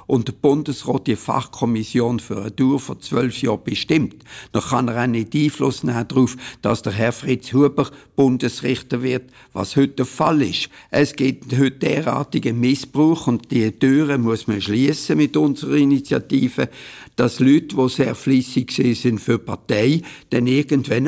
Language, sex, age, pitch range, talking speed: German, male, 60-79, 120-145 Hz, 160 wpm